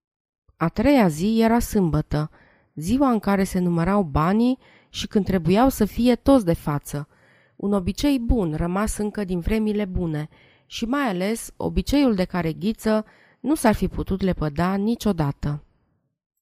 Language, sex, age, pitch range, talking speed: Romanian, female, 20-39, 170-220 Hz, 145 wpm